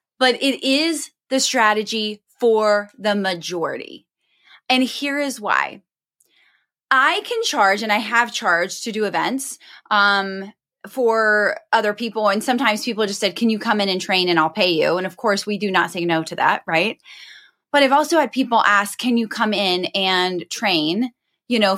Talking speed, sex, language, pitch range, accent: 180 wpm, female, English, 185-245 Hz, American